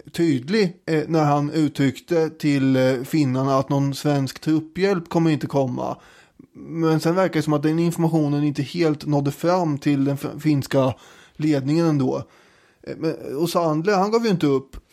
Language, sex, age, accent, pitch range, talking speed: English, male, 20-39, Swedish, 140-170 Hz, 150 wpm